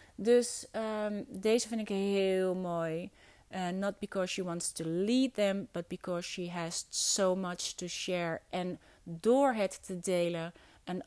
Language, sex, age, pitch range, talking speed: Dutch, female, 30-49, 175-240 Hz, 150 wpm